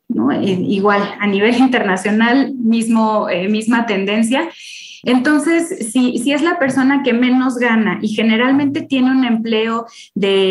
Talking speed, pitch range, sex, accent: 145 wpm, 205-245 Hz, female, Mexican